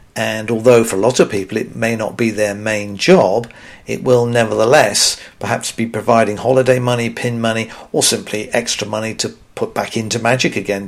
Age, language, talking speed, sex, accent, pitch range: 50-69, English, 190 wpm, male, British, 105-130 Hz